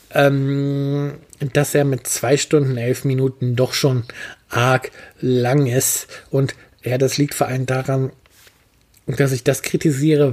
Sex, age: male, 50-69